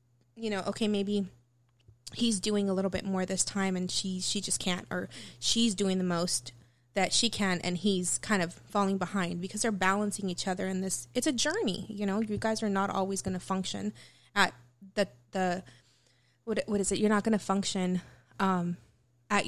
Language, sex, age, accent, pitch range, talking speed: English, female, 20-39, American, 180-200 Hz, 195 wpm